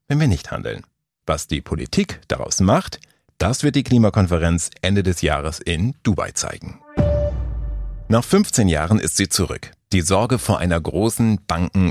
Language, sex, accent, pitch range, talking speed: German, male, German, 85-120 Hz, 155 wpm